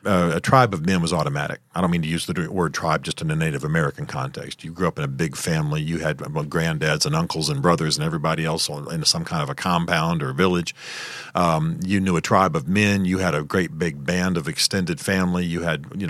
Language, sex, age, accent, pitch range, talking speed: English, male, 40-59, American, 85-105 Hz, 240 wpm